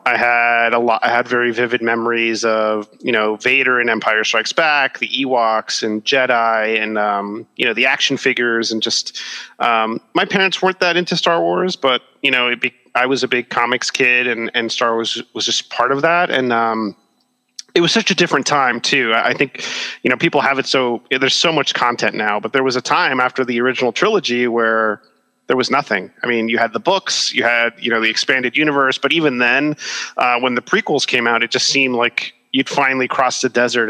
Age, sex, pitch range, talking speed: 30-49, male, 110-130 Hz, 220 wpm